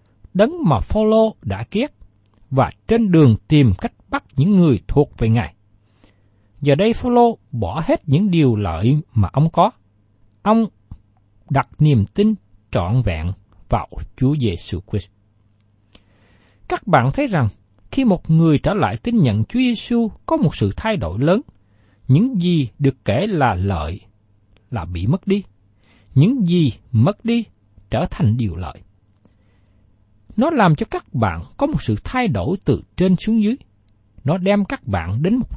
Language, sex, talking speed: Vietnamese, male, 160 wpm